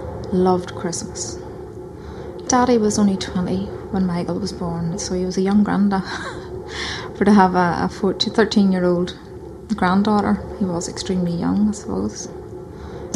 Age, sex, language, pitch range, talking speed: 20-39, female, English, 180-205 Hz, 145 wpm